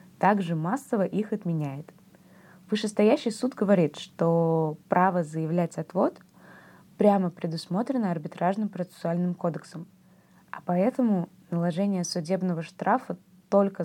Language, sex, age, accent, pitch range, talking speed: Russian, female, 20-39, native, 170-200 Hz, 95 wpm